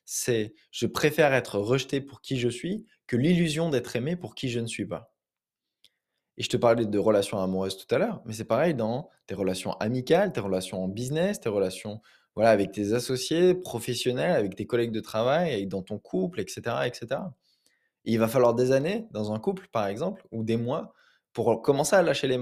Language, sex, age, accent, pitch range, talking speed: French, male, 20-39, French, 110-145 Hz, 205 wpm